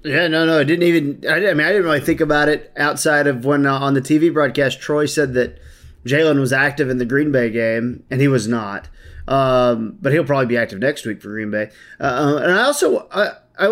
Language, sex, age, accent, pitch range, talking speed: English, male, 20-39, American, 130-165 Hz, 240 wpm